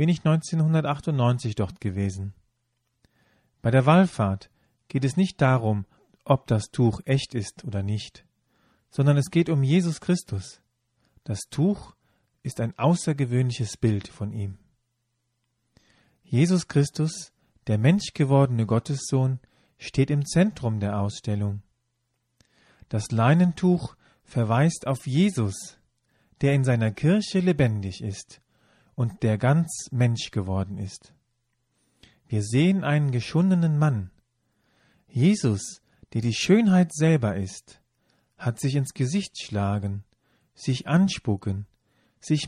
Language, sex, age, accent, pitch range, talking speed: German, male, 40-59, German, 110-150 Hz, 110 wpm